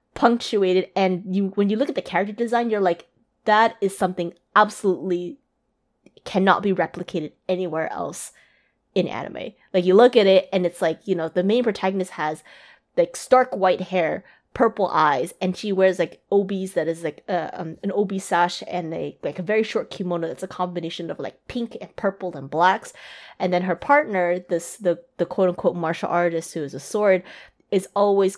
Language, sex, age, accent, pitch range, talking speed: English, female, 20-39, American, 165-195 Hz, 190 wpm